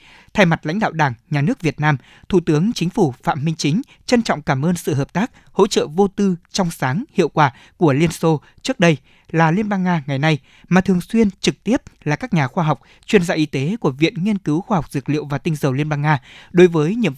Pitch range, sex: 150-190 Hz, male